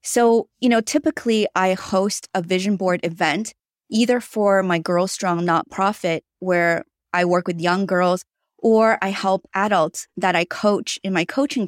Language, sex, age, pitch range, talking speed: English, female, 20-39, 180-210 Hz, 165 wpm